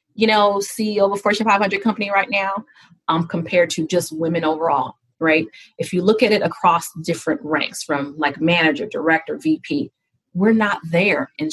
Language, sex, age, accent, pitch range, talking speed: English, female, 30-49, American, 165-205 Hz, 175 wpm